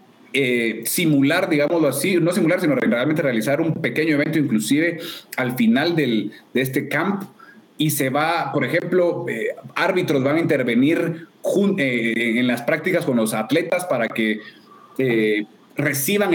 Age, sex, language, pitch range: 30-49, male, Spanish, 110-165 Hz